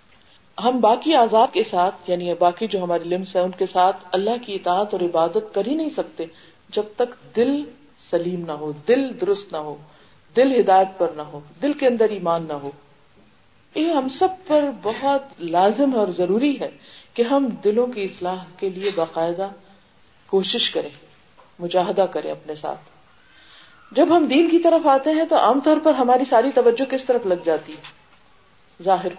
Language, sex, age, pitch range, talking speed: Urdu, female, 50-69, 175-250 Hz, 180 wpm